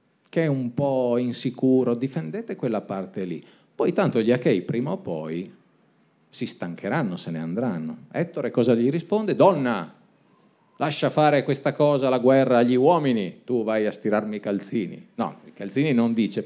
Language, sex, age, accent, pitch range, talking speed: Italian, male, 40-59, native, 120-145 Hz, 165 wpm